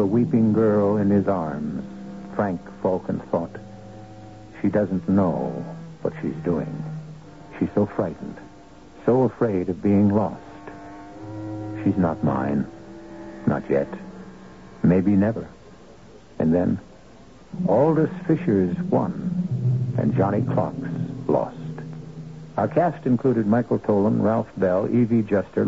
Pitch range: 95-130 Hz